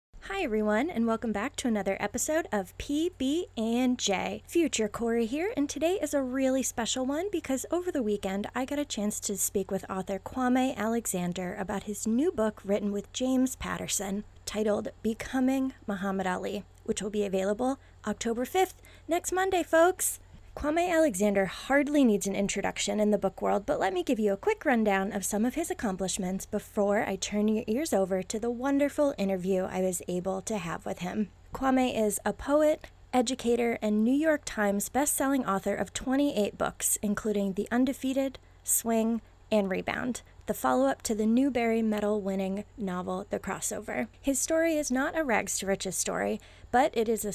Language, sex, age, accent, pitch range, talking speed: English, female, 20-39, American, 200-265 Hz, 170 wpm